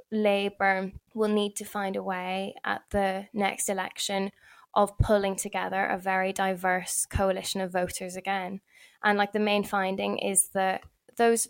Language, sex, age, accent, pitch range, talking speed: English, female, 10-29, British, 195-210 Hz, 150 wpm